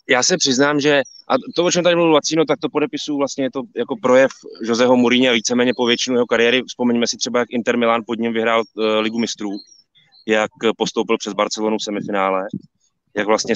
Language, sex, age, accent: Czech, male, 20-39, native